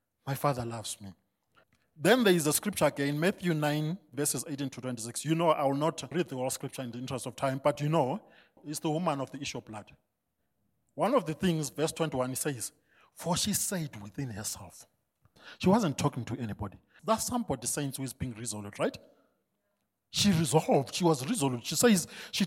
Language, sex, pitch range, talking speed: English, male, 125-175 Hz, 200 wpm